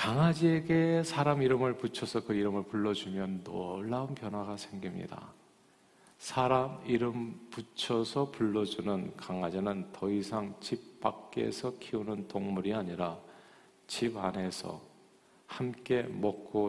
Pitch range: 95-125 Hz